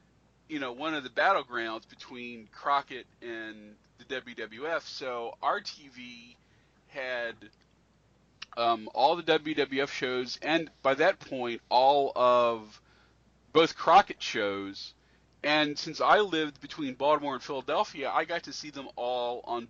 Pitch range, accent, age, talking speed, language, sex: 120-160 Hz, American, 40-59, 135 wpm, English, male